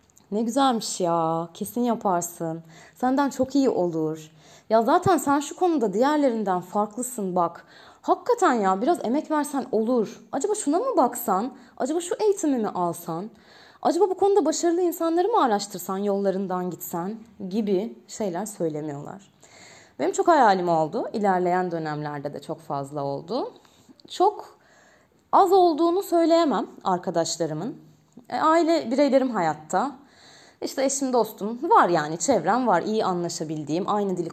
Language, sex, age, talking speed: Turkish, female, 20-39, 130 wpm